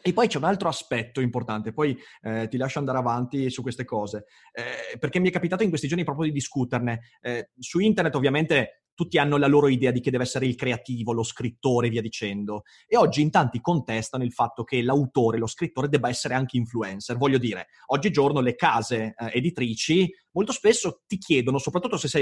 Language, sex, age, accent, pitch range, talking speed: Italian, male, 30-49, native, 125-175 Hz, 205 wpm